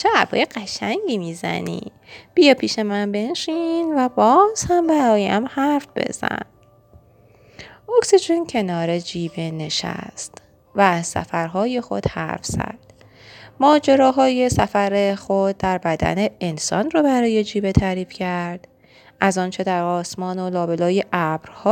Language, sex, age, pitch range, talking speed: Persian, female, 20-39, 175-225 Hz, 115 wpm